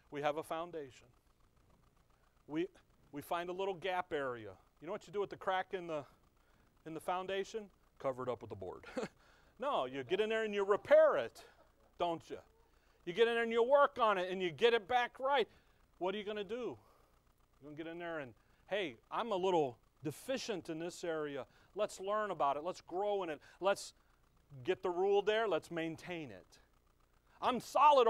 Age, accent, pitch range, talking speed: 40-59, American, 145-210 Hz, 205 wpm